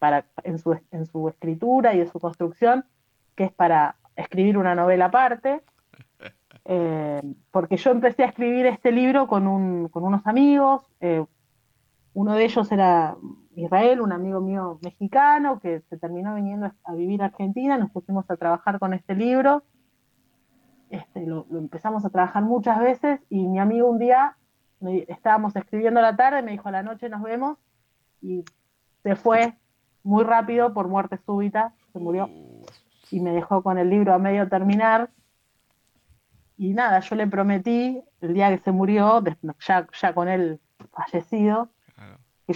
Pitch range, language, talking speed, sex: 175-230 Hz, Spanish, 165 wpm, female